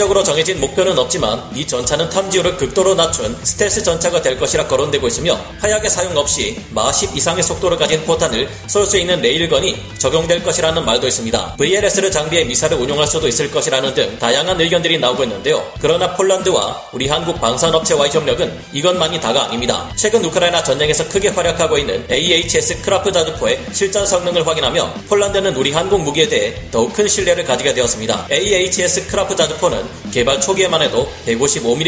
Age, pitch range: 30-49, 160-205 Hz